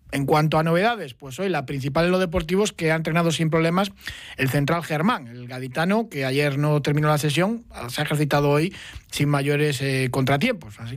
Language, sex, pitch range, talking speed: Spanish, male, 135-165 Hz, 195 wpm